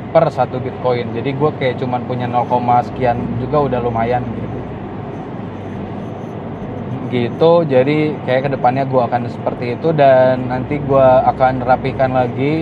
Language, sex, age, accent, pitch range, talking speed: Indonesian, male, 20-39, native, 125-140 Hz, 135 wpm